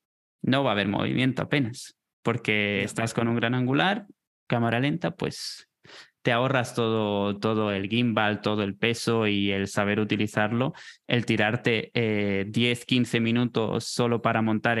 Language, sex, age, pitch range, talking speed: Spanish, male, 20-39, 110-135 Hz, 145 wpm